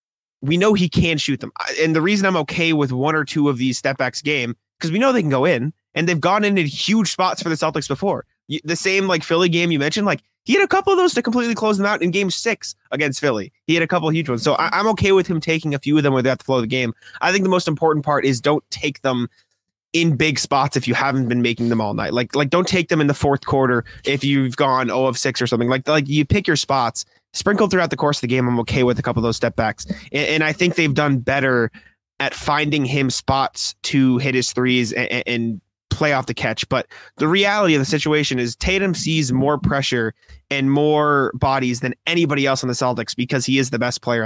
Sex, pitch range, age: male, 125-165 Hz, 20-39